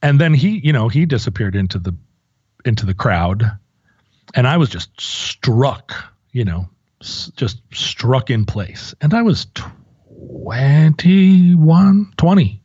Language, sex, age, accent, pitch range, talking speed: English, male, 40-59, American, 105-145 Hz, 140 wpm